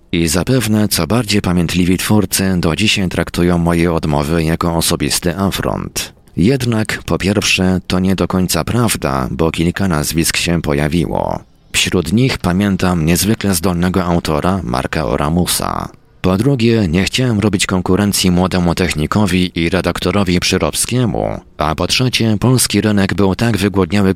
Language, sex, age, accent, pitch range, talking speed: Polish, male, 40-59, native, 85-100 Hz, 135 wpm